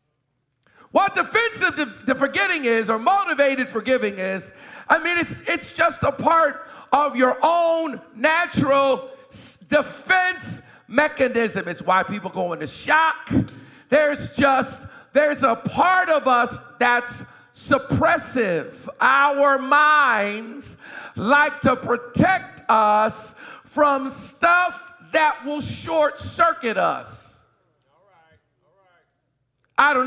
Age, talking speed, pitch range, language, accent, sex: 50-69, 105 wpm, 220-295 Hz, English, American, male